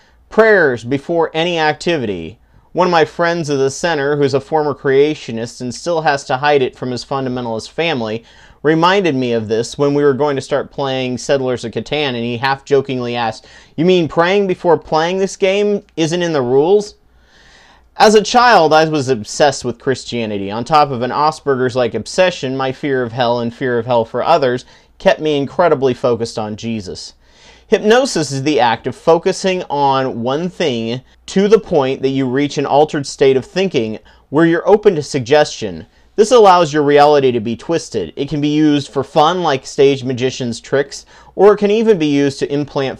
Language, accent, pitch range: English, American, 125-160 Hz